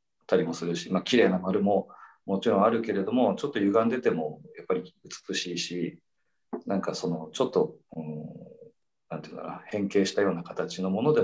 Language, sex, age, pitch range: Japanese, male, 40-59, 85-120 Hz